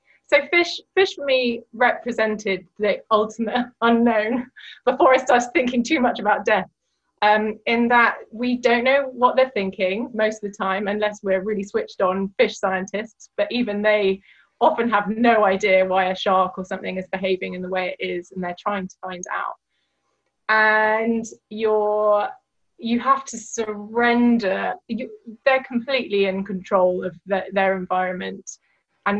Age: 20-39